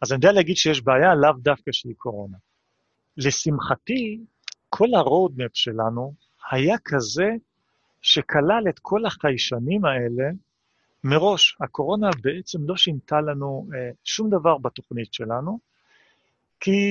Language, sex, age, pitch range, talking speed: Hebrew, male, 40-59, 125-175 Hz, 115 wpm